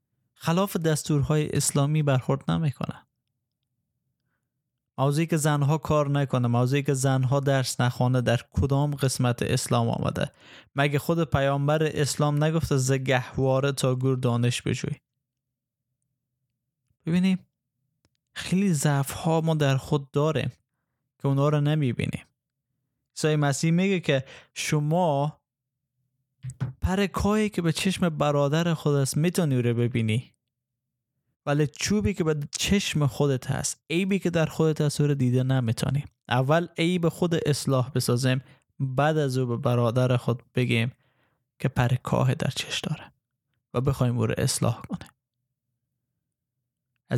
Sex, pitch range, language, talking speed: male, 125-150 Hz, Persian, 125 wpm